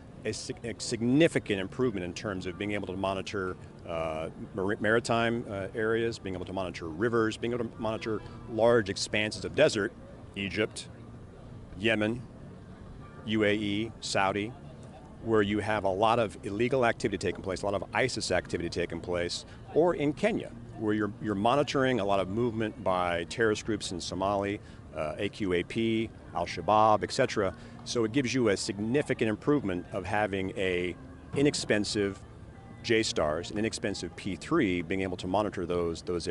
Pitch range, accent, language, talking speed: 95-115 Hz, American, English, 150 wpm